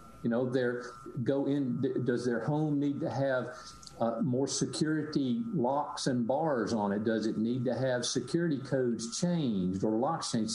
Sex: male